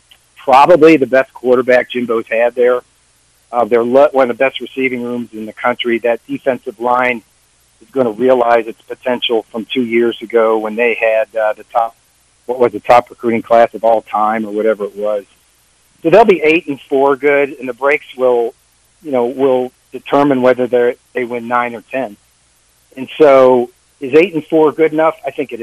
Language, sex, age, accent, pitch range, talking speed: English, male, 50-69, American, 110-135 Hz, 190 wpm